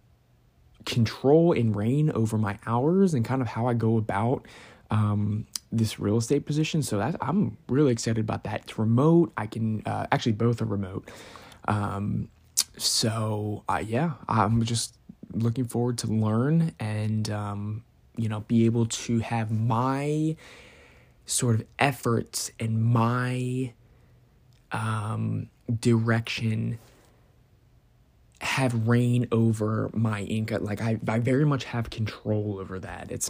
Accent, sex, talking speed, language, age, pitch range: American, male, 135 wpm, English, 20-39, 110-130 Hz